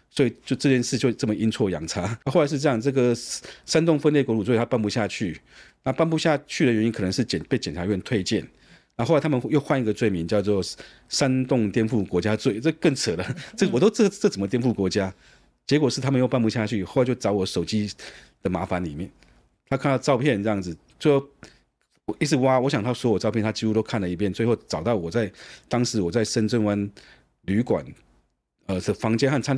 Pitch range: 105-130 Hz